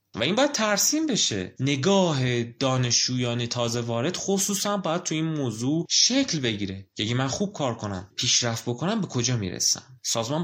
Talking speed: 155 wpm